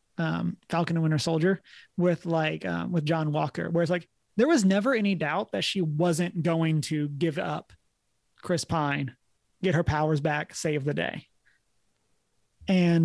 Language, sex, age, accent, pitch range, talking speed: English, male, 30-49, American, 150-185 Hz, 165 wpm